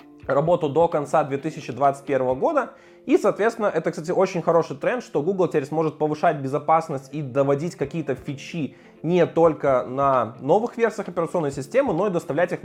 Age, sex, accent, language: 20-39, male, native, Russian